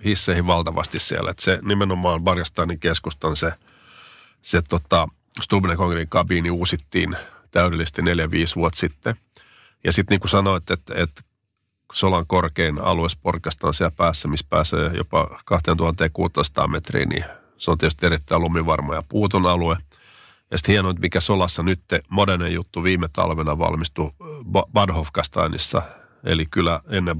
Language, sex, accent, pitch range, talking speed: Finnish, male, native, 80-95 Hz, 130 wpm